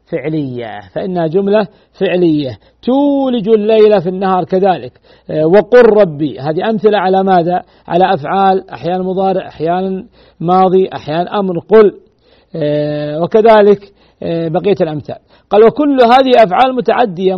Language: Arabic